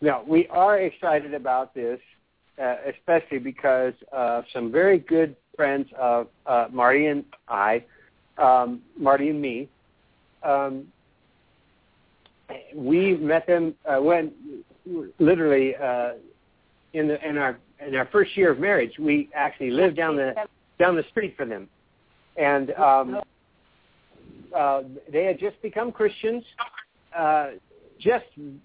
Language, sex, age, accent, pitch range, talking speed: English, male, 60-79, American, 135-185 Hz, 130 wpm